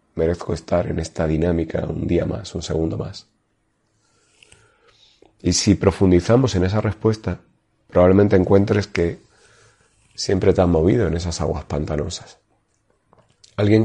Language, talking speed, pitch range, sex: Spanish, 125 wpm, 85-110 Hz, male